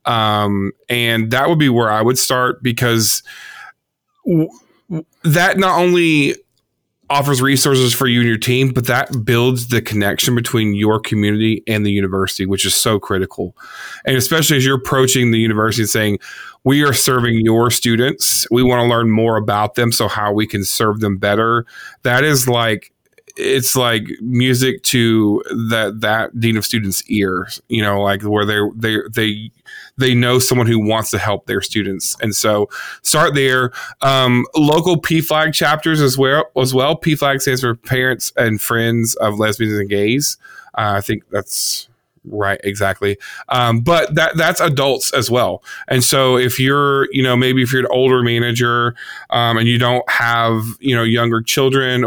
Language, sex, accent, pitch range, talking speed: English, male, American, 110-130 Hz, 175 wpm